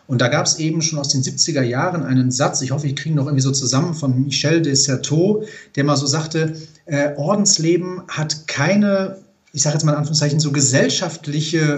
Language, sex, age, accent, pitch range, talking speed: German, male, 40-59, German, 145-180 Hz, 210 wpm